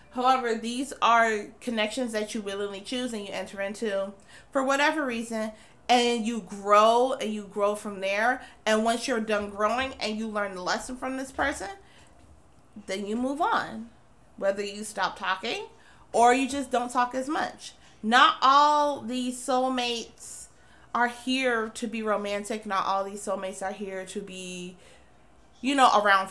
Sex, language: female, English